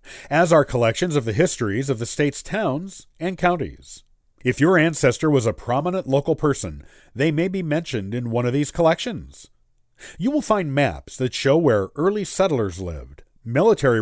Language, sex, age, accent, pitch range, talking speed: English, male, 50-69, American, 115-160 Hz, 170 wpm